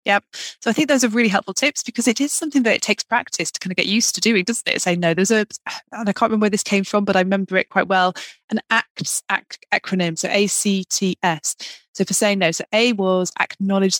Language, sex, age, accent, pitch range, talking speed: English, female, 20-39, British, 180-220 Hz, 245 wpm